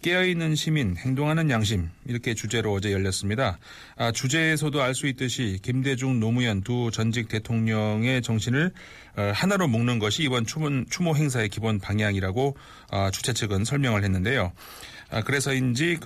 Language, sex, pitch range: Korean, male, 105-135 Hz